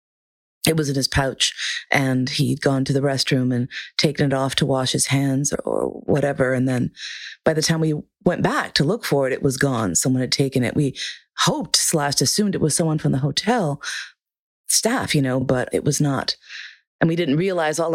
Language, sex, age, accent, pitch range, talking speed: English, female, 30-49, American, 140-170 Hz, 210 wpm